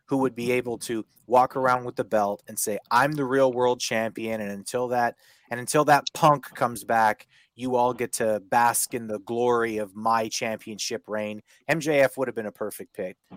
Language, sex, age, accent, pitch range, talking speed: English, male, 30-49, American, 110-135 Hz, 200 wpm